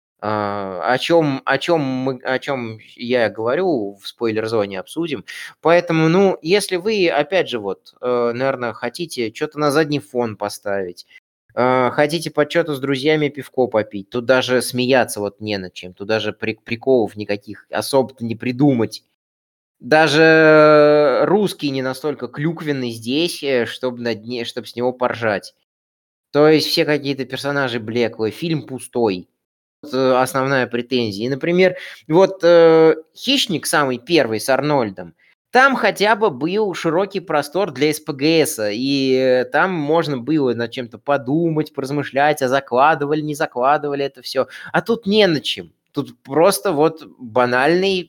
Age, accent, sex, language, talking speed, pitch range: 20-39, native, male, Russian, 140 wpm, 120-155 Hz